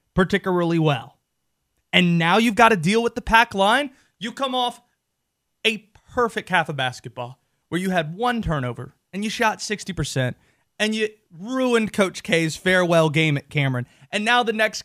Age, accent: 30-49, American